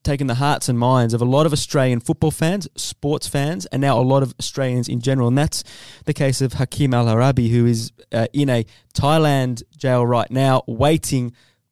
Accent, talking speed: Australian, 200 wpm